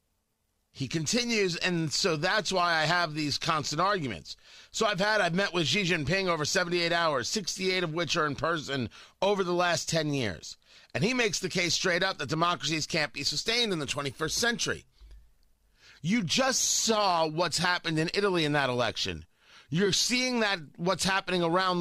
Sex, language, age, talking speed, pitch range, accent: male, English, 40-59, 180 wpm, 130-200 Hz, American